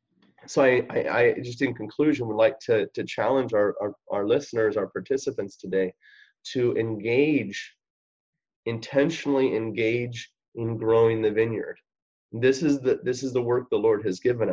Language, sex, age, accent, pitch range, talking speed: English, male, 30-49, American, 105-135 Hz, 145 wpm